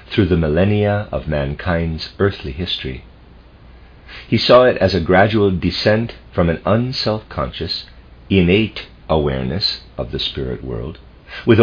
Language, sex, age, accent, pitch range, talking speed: English, male, 50-69, American, 70-105 Hz, 130 wpm